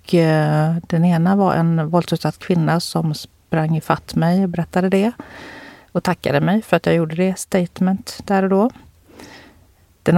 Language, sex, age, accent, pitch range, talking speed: Swedish, female, 40-59, native, 160-205 Hz, 165 wpm